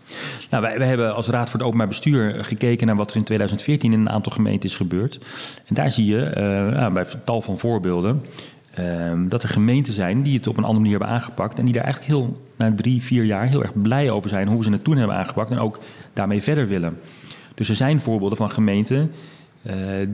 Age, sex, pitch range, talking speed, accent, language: 40-59, male, 105-125 Hz, 230 wpm, Dutch, Dutch